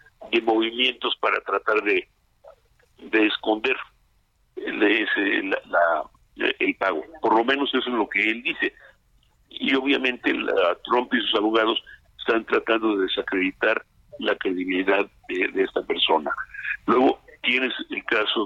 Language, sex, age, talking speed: Spanish, male, 50-69, 145 wpm